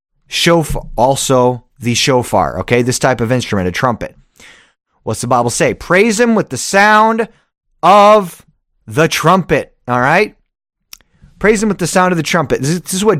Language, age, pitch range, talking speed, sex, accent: English, 30-49, 125-170 Hz, 165 wpm, male, American